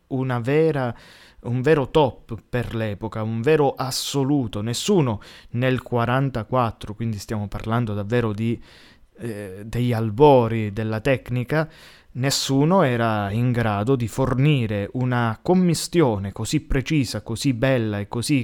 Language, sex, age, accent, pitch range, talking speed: Italian, male, 20-39, native, 110-135 Hz, 120 wpm